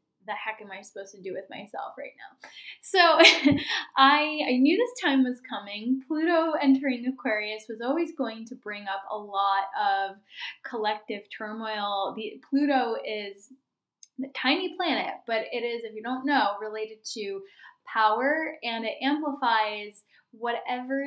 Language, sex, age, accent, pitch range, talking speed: English, female, 10-29, American, 215-270 Hz, 150 wpm